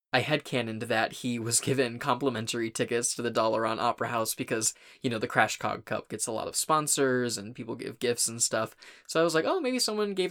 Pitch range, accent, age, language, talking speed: 115-150 Hz, American, 20-39, English, 225 wpm